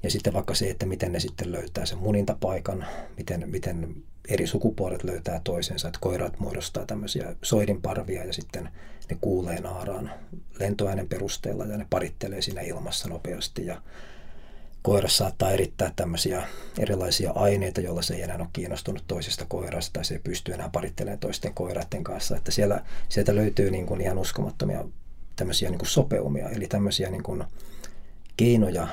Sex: male